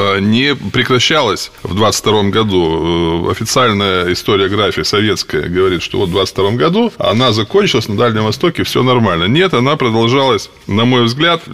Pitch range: 105-135 Hz